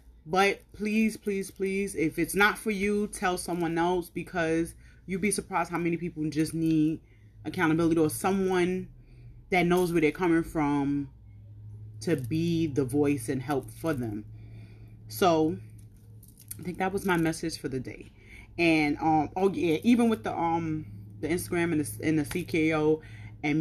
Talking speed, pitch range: 165 wpm, 135-180 Hz